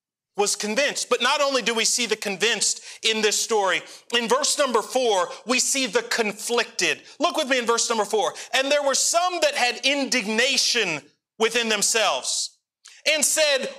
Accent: American